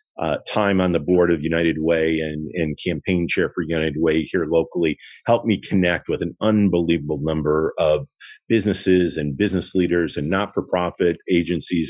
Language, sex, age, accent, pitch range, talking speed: English, male, 40-59, American, 85-105 Hz, 160 wpm